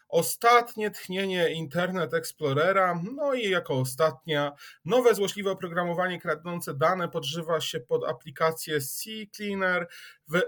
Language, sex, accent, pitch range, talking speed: Polish, male, native, 145-180 Hz, 110 wpm